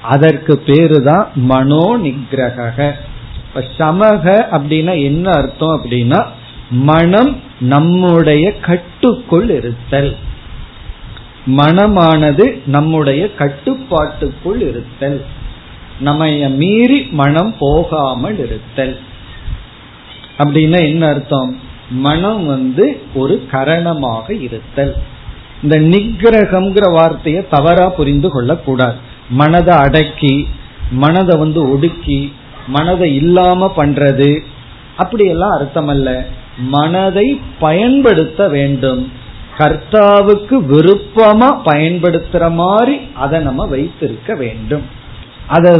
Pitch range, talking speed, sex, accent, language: 135-175 Hz, 75 wpm, male, native, Tamil